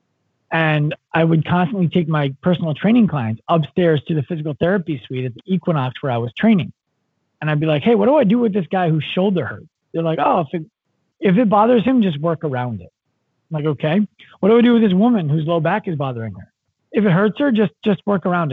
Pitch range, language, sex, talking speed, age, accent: 130-170 Hz, English, male, 235 wpm, 30-49, American